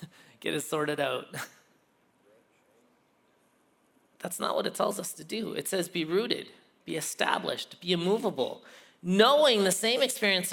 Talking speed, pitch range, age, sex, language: 135 wpm, 140-205 Hz, 30-49, male, English